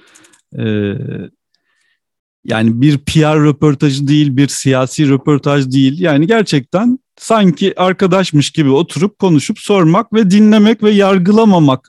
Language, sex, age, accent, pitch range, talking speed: Turkish, male, 50-69, native, 125-205 Hz, 110 wpm